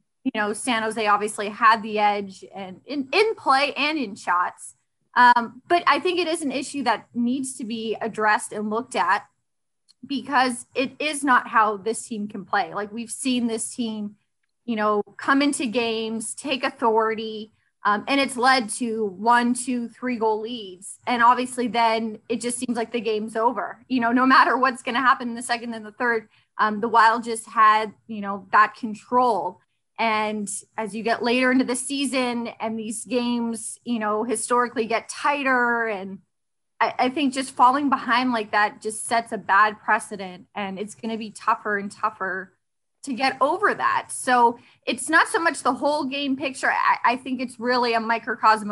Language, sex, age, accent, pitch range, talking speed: English, female, 20-39, American, 210-250 Hz, 190 wpm